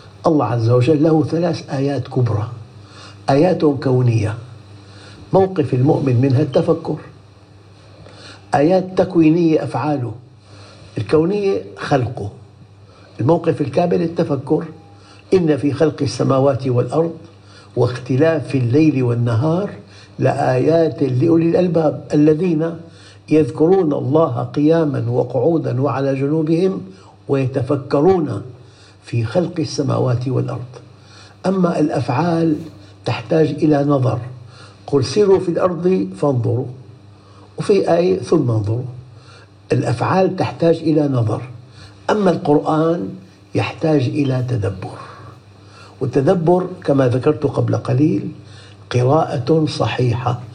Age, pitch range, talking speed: 60-79, 115-155 Hz, 90 wpm